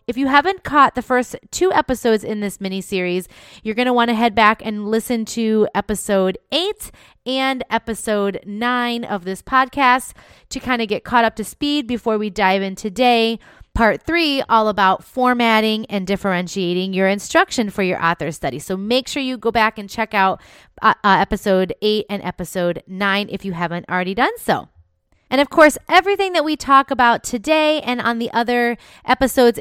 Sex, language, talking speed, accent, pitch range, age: female, English, 185 wpm, American, 205-260 Hz, 30-49